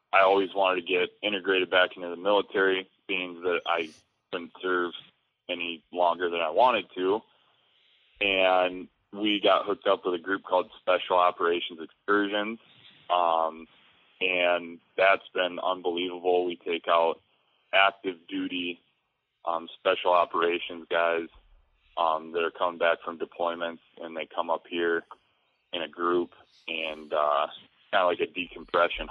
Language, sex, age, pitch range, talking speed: English, male, 20-39, 85-95 Hz, 140 wpm